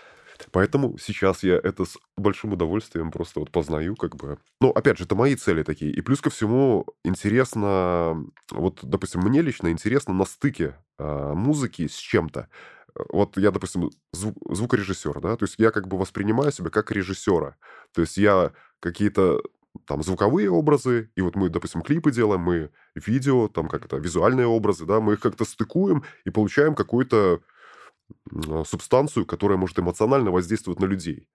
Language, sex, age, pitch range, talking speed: Russian, male, 20-39, 90-120 Hz, 160 wpm